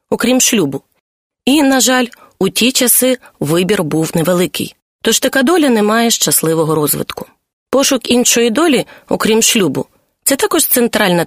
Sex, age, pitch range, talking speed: female, 30-49, 185-265 Hz, 140 wpm